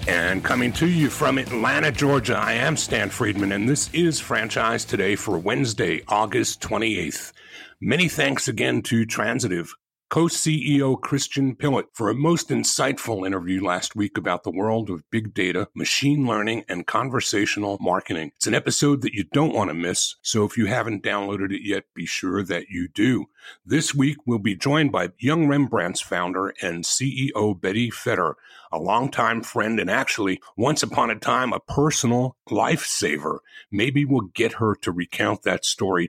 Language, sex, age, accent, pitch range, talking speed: English, male, 50-69, American, 100-140 Hz, 165 wpm